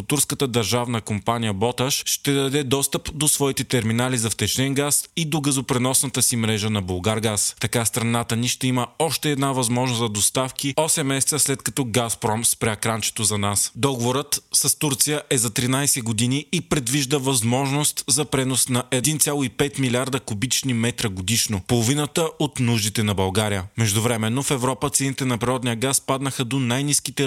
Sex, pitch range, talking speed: male, 115-140 Hz, 160 wpm